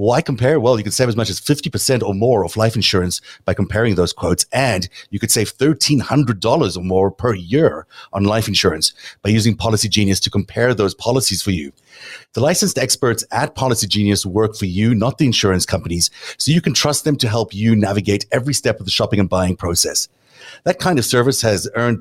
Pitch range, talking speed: 100-125 Hz, 210 wpm